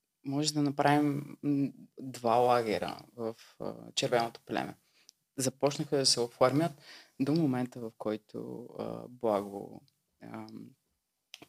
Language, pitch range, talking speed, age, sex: Bulgarian, 125-155 Hz, 105 wpm, 20-39, female